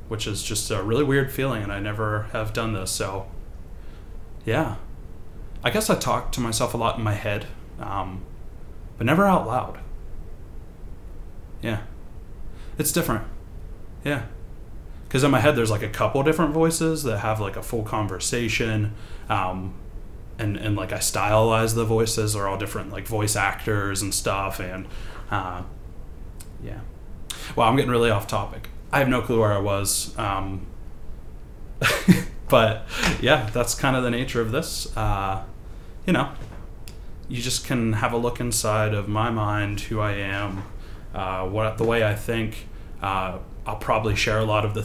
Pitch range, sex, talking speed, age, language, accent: 95-115 Hz, male, 165 wpm, 20-39, English, American